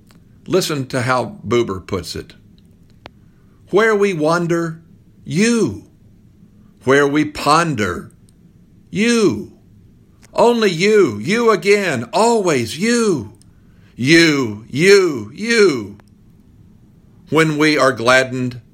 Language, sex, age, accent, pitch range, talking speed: English, male, 50-69, American, 100-155 Hz, 85 wpm